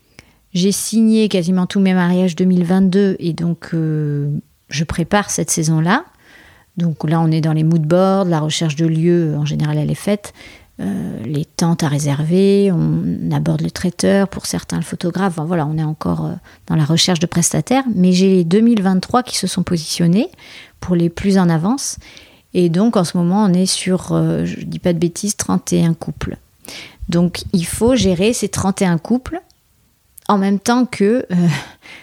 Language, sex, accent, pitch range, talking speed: French, female, French, 160-195 Hz, 175 wpm